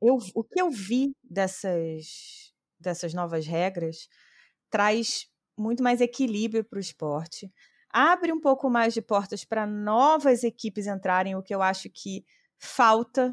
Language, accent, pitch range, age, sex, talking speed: Portuguese, Brazilian, 170-235 Hz, 20-39, female, 140 wpm